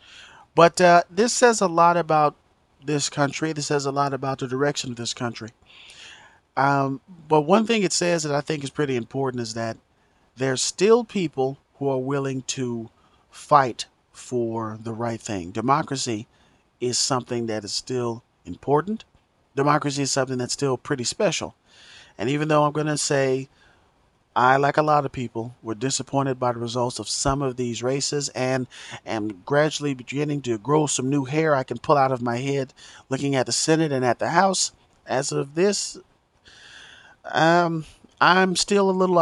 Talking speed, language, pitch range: 175 wpm, English, 125-160 Hz